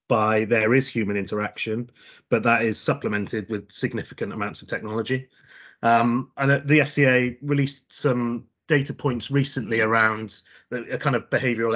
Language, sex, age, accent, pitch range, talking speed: English, male, 30-49, British, 110-130 Hz, 145 wpm